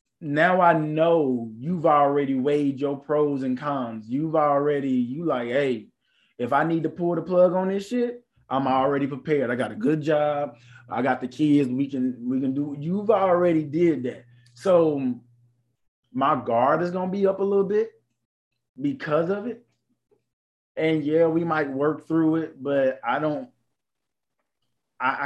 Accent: American